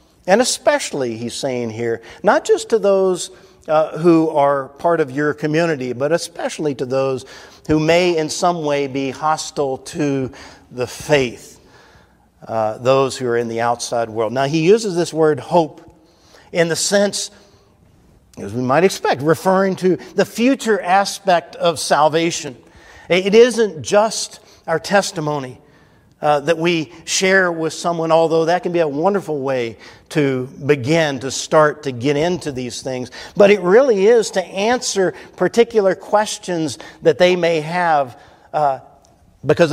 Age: 50-69